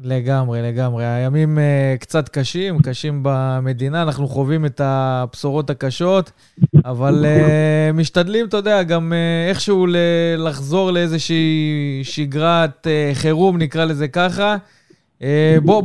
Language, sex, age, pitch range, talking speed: Hebrew, male, 20-39, 135-165 Hz, 120 wpm